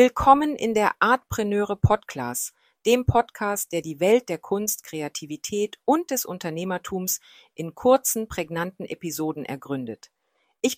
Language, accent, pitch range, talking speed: German, German, 165-210 Hz, 125 wpm